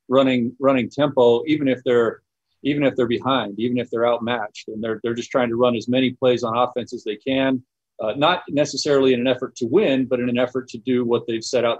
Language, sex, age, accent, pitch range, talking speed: English, male, 50-69, American, 120-135 Hz, 240 wpm